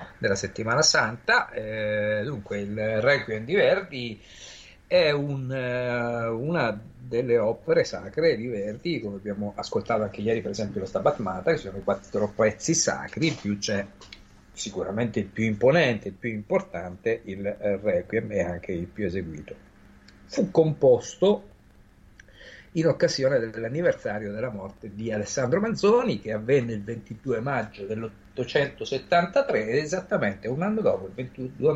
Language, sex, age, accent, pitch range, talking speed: Italian, male, 50-69, native, 105-155 Hz, 135 wpm